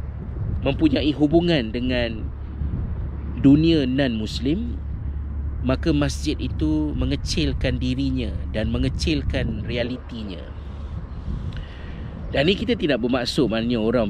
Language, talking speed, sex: Malay, 85 wpm, male